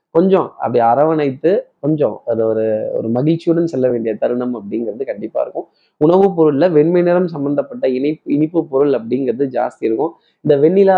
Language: Tamil